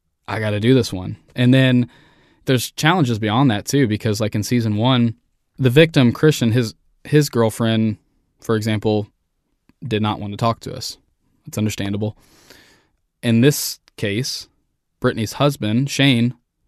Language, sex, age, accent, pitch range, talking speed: English, male, 10-29, American, 105-125 Hz, 150 wpm